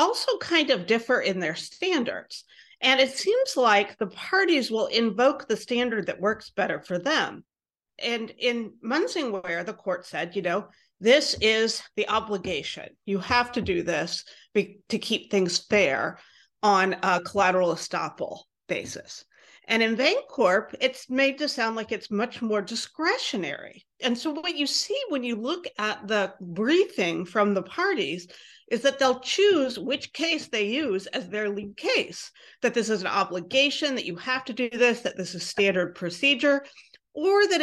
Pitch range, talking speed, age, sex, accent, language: 200-285 Hz, 165 wpm, 50-69, female, American, English